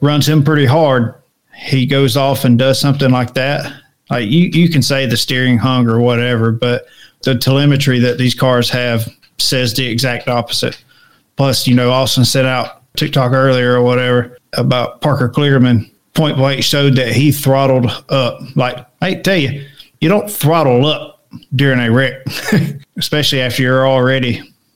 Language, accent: English, American